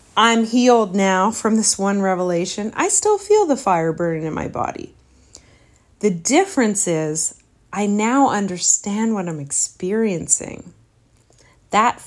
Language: English